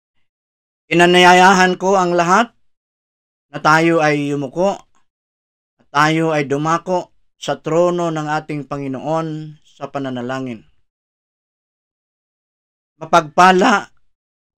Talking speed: 80 wpm